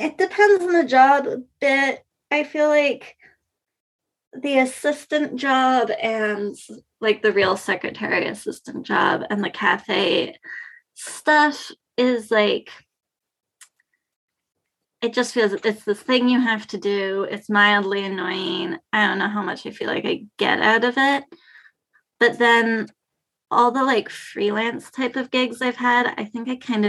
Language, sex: English, female